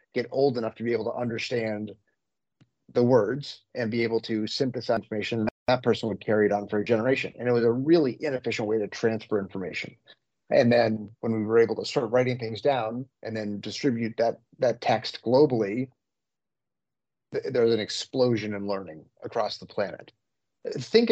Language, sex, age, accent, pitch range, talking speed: English, male, 30-49, American, 115-135 Hz, 180 wpm